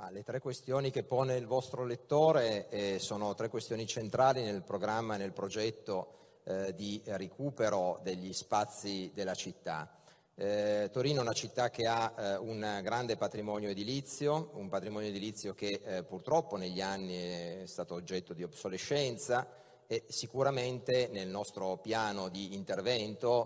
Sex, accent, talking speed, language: male, native, 150 wpm, Italian